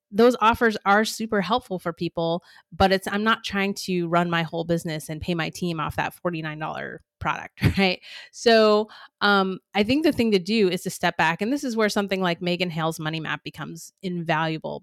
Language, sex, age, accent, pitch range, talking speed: English, female, 30-49, American, 170-205 Hz, 200 wpm